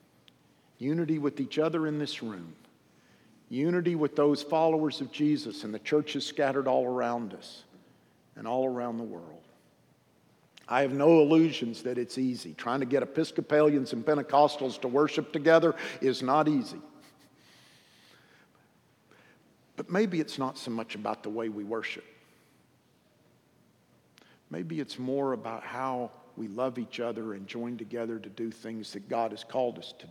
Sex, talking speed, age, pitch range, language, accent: male, 150 wpm, 50-69, 120-150 Hz, English, American